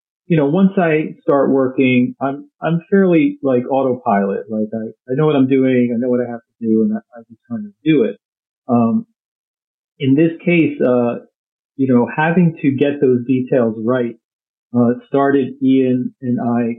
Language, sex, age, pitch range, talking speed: English, male, 40-59, 120-170 Hz, 180 wpm